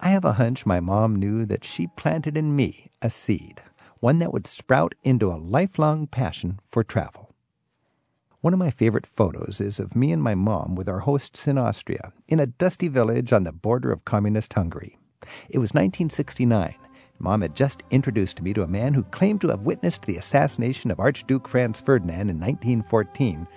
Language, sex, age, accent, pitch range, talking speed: English, male, 50-69, American, 100-145 Hz, 190 wpm